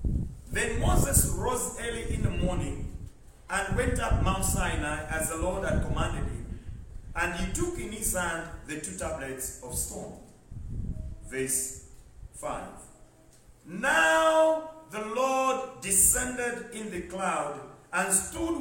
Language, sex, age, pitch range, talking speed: English, male, 50-69, 180-250 Hz, 130 wpm